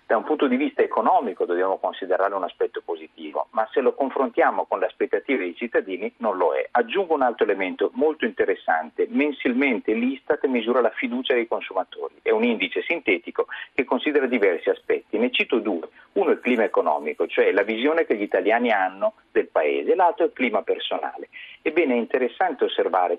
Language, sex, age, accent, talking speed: Italian, male, 40-59, native, 185 wpm